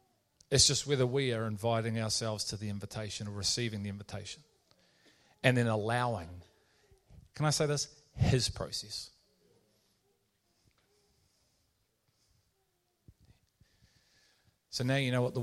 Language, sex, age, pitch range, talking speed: English, male, 40-59, 105-130 Hz, 115 wpm